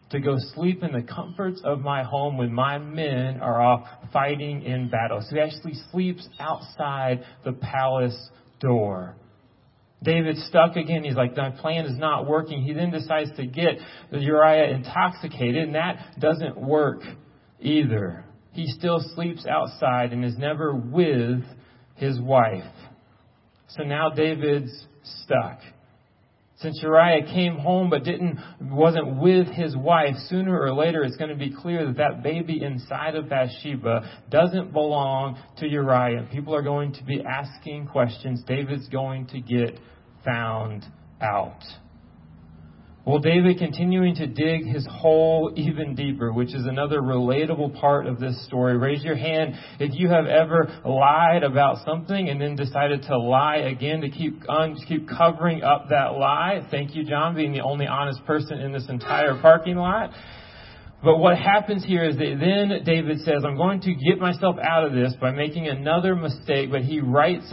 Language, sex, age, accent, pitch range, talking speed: English, male, 30-49, American, 130-160 Hz, 160 wpm